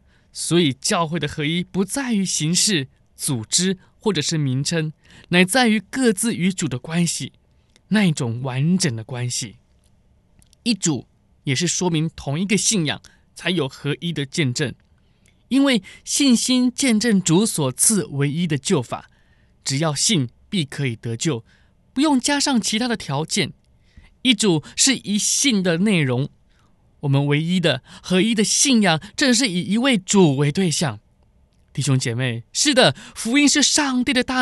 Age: 20-39